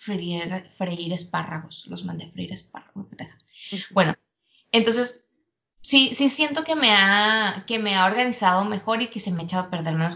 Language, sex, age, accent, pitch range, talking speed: Spanish, female, 20-39, Mexican, 175-225 Hz, 175 wpm